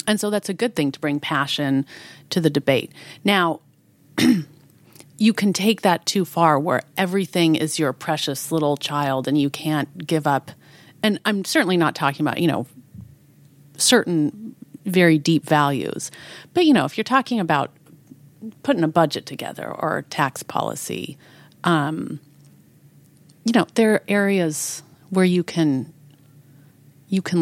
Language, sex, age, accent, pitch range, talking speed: English, female, 30-49, American, 145-190 Hz, 150 wpm